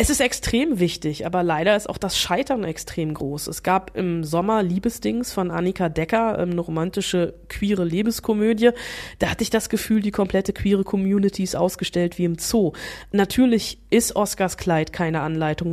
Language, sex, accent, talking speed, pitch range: German, female, German, 170 wpm, 170-215 Hz